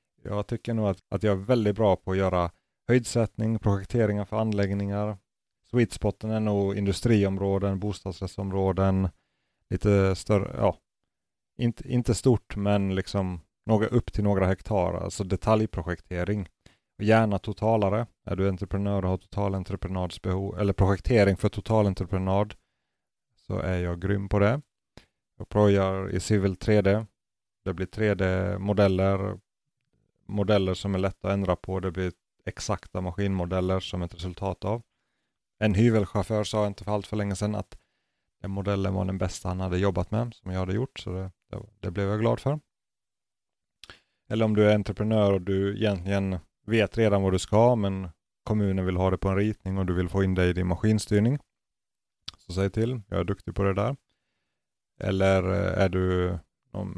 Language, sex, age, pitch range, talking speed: Swedish, male, 30-49, 95-105 Hz, 160 wpm